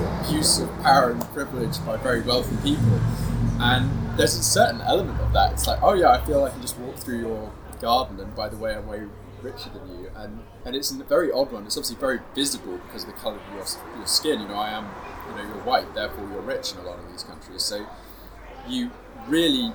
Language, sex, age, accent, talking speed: English, male, 20-39, British, 235 wpm